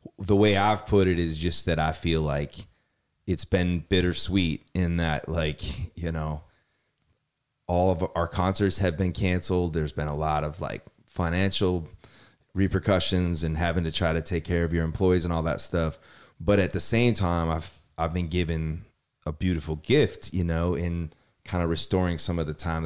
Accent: American